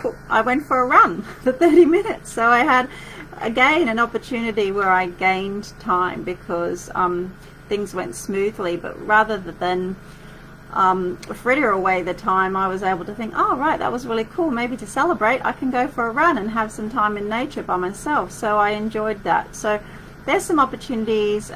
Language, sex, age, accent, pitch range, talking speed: English, female, 40-59, Australian, 175-215 Hz, 185 wpm